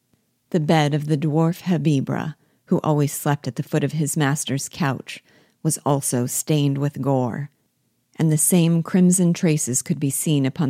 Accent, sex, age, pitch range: American, female, 40-59, 135-155 Hz